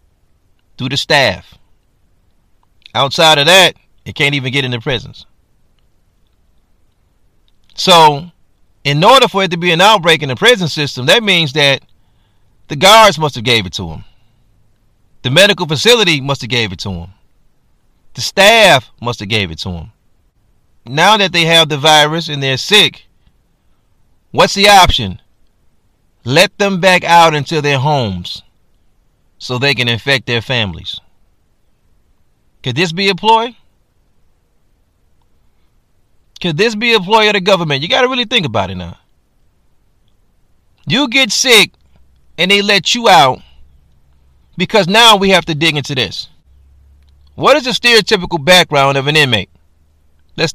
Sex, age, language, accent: male, 30-49, English, American